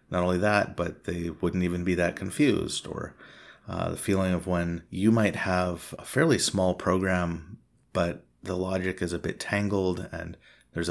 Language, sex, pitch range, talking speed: English, male, 85-100 Hz, 175 wpm